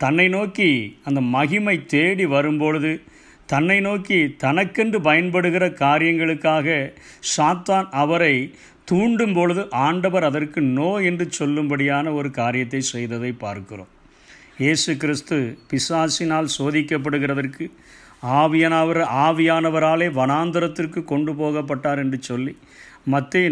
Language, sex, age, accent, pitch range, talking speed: Tamil, male, 50-69, native, 140-175 Hz, 90 wpm